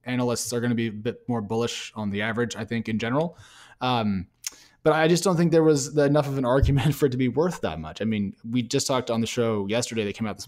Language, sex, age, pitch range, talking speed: English, male, 20-39, 115-150 Hz, 275 wpm